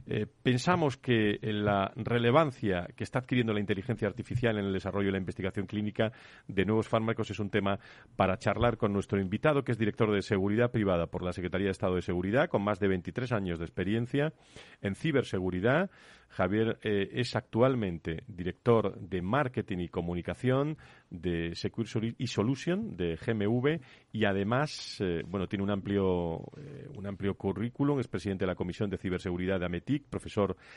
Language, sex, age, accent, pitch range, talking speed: Spanish, male, 40-59, Spanish, 95-120 Hz, 170 wpm